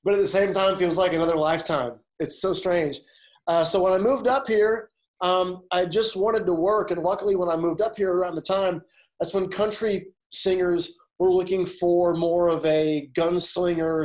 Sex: male